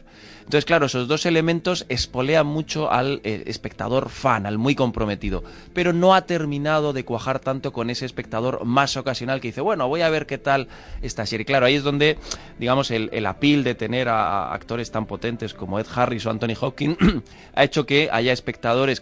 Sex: male